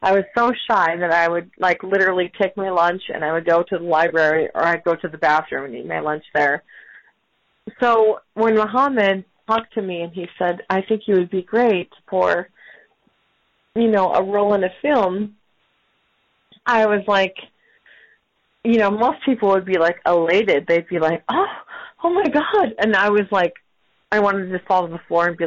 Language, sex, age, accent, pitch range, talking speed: English, female, 30-49, American, 175-235 Hz, 200 wpm